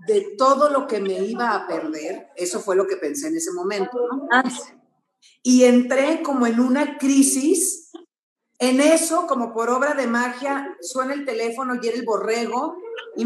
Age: 40-59